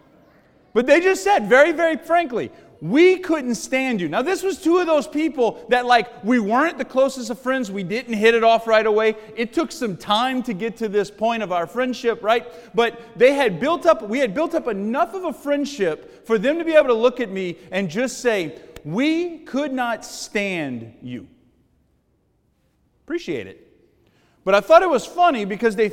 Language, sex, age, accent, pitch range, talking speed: English, male, 40-59, American, 200-275 Hz, 200 wpm